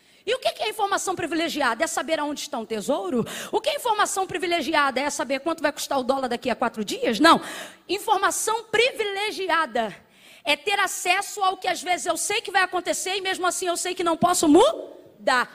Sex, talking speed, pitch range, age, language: female, 200 wpm, 325-400 Hz, 20-39, Portuguese